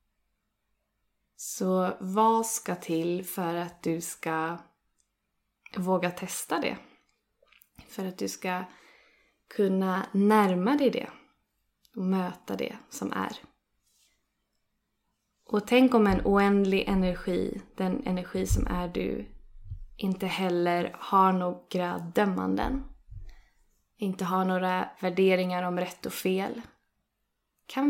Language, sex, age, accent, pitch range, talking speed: Swedish, female, 20-39, native, 175-200 Hz, 105 wpm